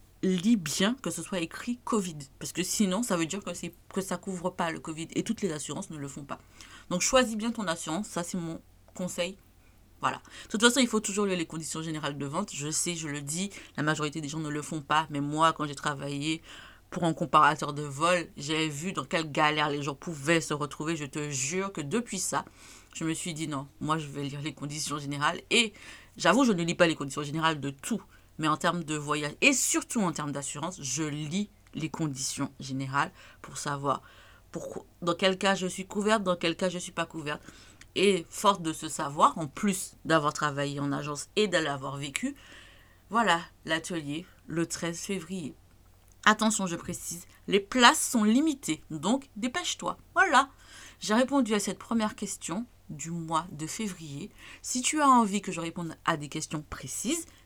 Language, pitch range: French, 150-195 Hz